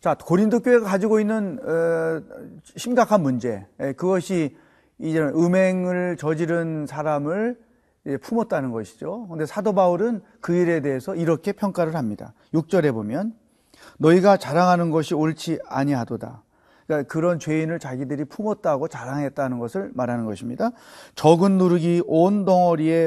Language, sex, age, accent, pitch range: Korean, male, 40-59, native, 135-190 Hz